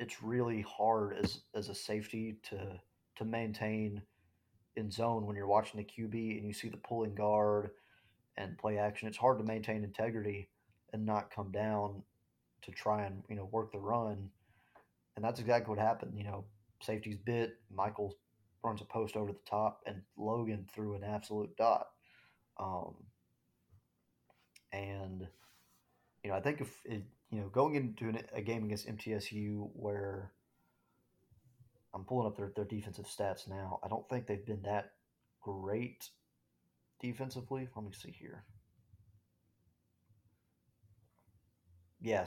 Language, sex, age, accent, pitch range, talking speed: English, male, 30-49, American, 100-110 Hz, 150 wpm